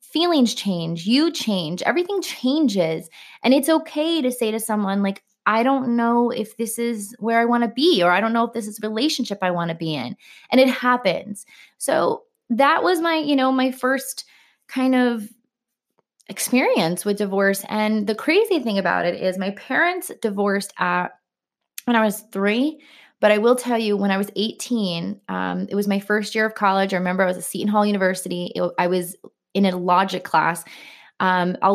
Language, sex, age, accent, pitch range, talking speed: English, female, 20-39, American, 185-240 Hz, 200 wpm